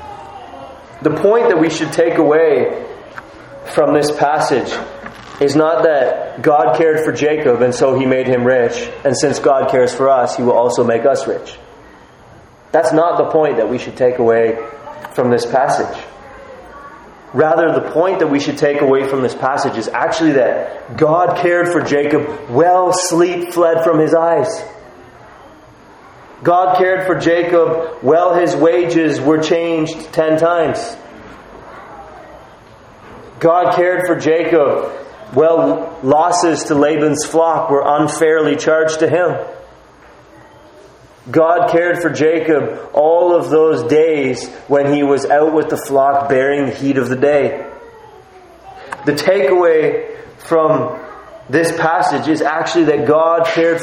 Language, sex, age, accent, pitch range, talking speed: English, male, 30-49, American, 150-175 Hz, 140 wpm